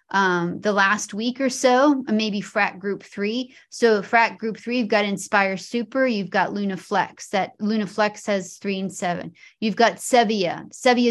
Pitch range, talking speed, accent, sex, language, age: 195-240 Hz, 180 wpm, American, female, English, 30-49